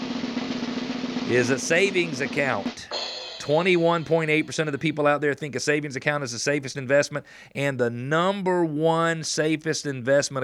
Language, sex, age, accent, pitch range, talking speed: English, male, 40-59, American, 120-155 Hz, 130 wpm